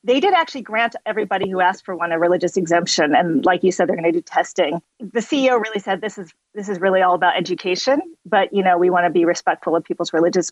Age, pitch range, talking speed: 40-59, 185-230 Hz, 250 wpm